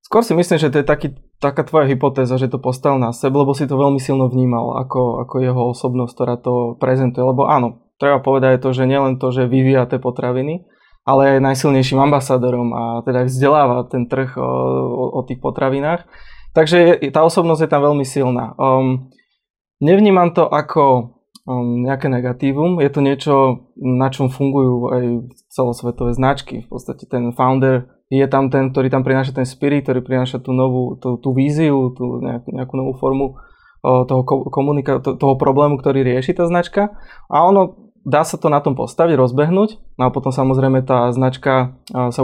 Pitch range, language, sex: 125-140 Hz, Slovak, male